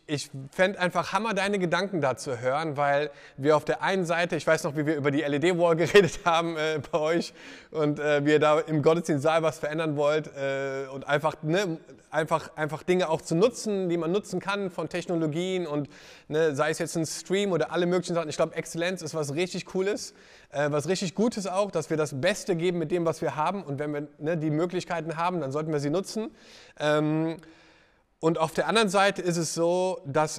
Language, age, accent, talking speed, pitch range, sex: German, 30-49, German, 215 wpm, 155-180 Hz, male